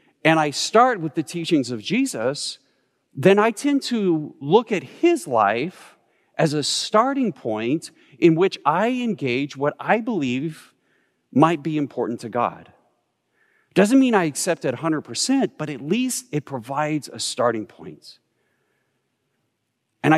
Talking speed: 140 wpm